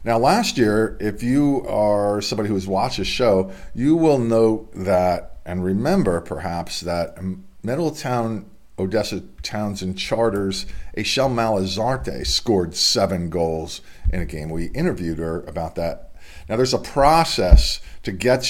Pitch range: 85-105 Hz